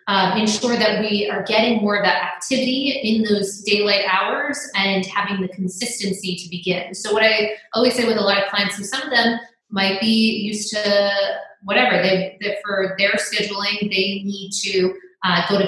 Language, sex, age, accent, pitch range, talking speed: English, female, 20-39, American, 185-215 Hz, 190 wpm